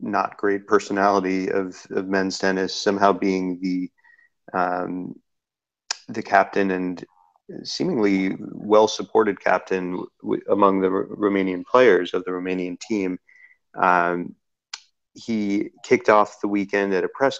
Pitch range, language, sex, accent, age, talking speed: 90-100 Hz, English, male, American, 30-49, 125 wpm